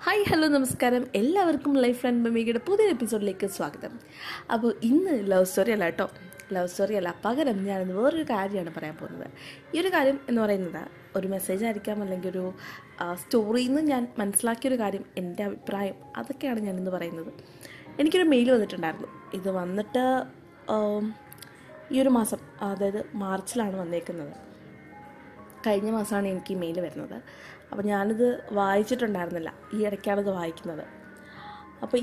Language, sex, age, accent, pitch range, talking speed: Malayalam, female, 20-39, native, 190-245 Hz, 125 wpm